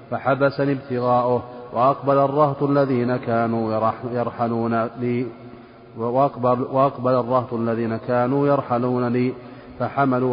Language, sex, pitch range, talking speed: Arabic, male, 115-135 Hz, 85 wpm